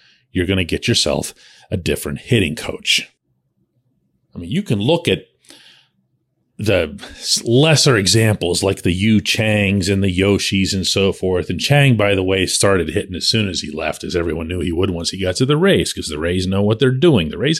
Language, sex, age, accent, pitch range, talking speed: English, male, 40-59, American, 95-130 Hz, 205 wpm